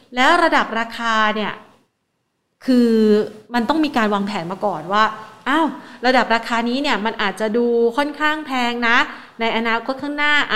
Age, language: 30-49, Thai